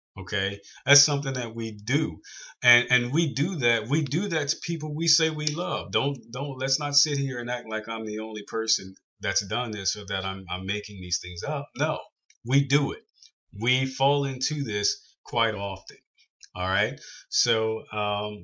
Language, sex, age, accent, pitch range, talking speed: English, male, 30-49, American, 90-120 Hz, 190 wpm